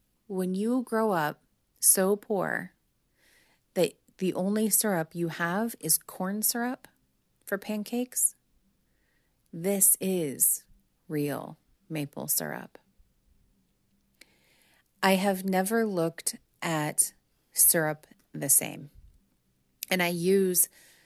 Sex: female